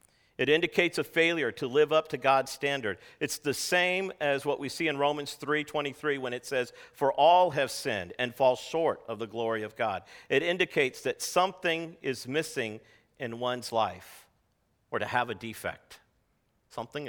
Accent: American